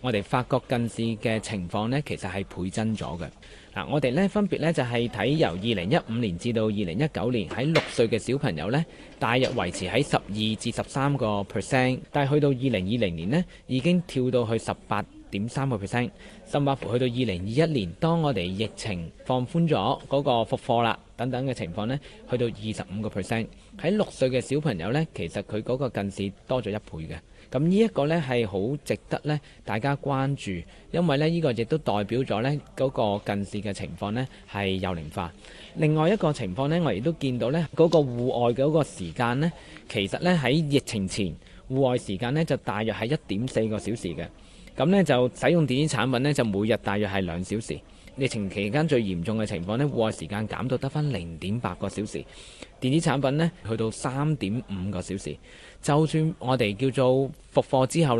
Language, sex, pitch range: Chinese, male, 100-140 Hz